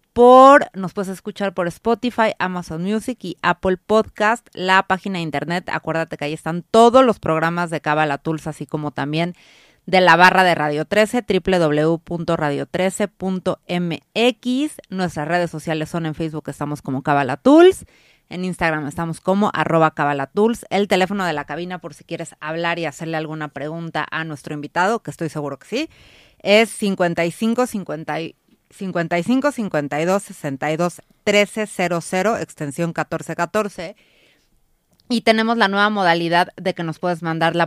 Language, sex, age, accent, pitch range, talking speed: Spanish, female, 30-49, Mexican, 155-205 Hz, 145 wpm